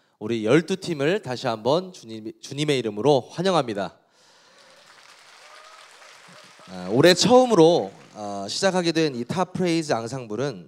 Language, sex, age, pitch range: Korean, male, 30-49, 110-170 Hz